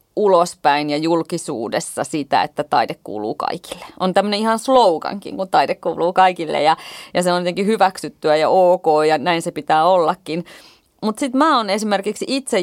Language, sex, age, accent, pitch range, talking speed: Finnish, female, 30-49, native, 160-215 Hz, 165 wpm